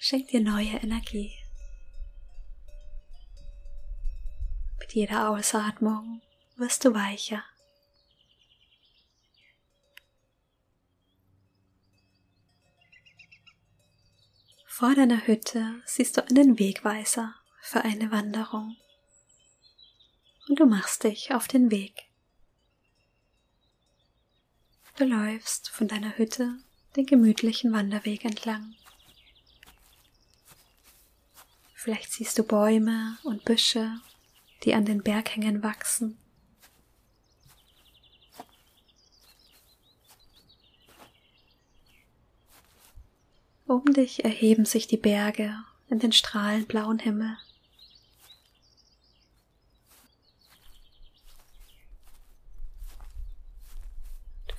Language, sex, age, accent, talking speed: German, female, 20-39, German, 65 wpm